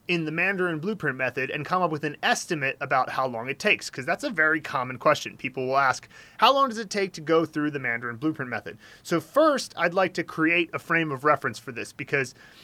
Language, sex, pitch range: English, male, 135-175 Hz